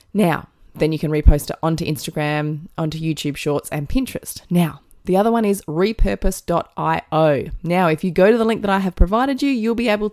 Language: English